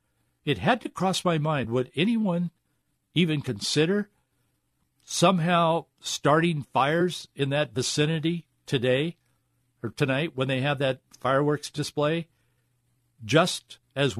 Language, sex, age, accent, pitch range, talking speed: English, male, 60-79, American, 125-175 Hz, 115 wpm